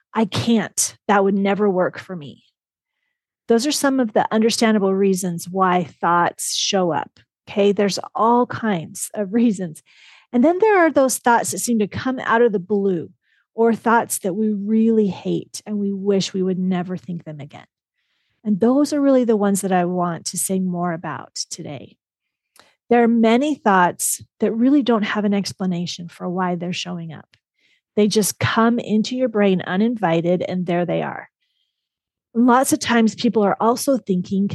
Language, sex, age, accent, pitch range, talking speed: English, female, 40-59, American, 185-230 Hz, 175 wpm